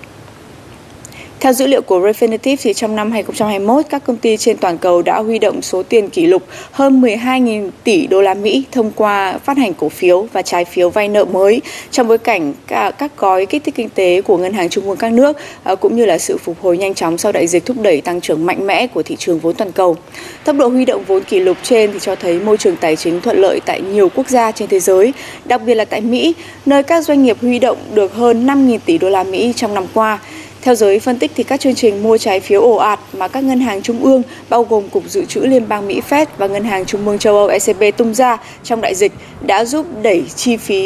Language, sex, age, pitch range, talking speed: Vietnamese, female, 20-39, 195-260 Hz, 250 wpm